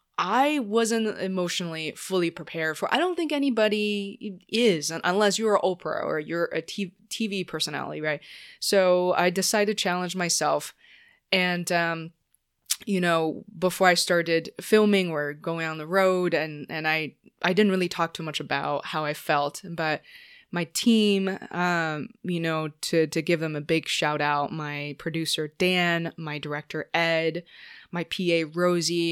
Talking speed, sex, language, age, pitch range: 155 wpm, female, English, 20-39, 155-185 Hz